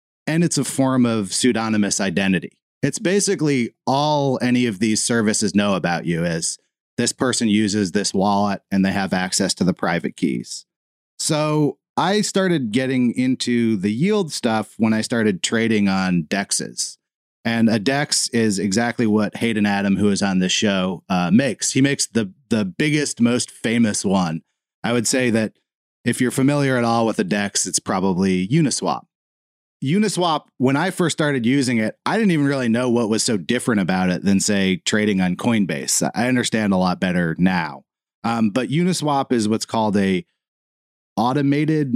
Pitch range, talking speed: 100-135 Hz, 170 wpm